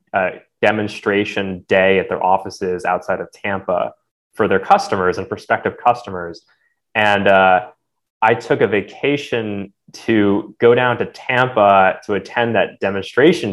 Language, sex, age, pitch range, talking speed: English, male, 20-39, 95-115 Hz, 135 wpm